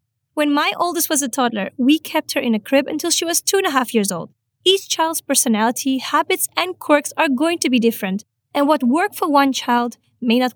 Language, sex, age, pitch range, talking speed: English, female, 20-39, 235-315 Hz, 225 wpm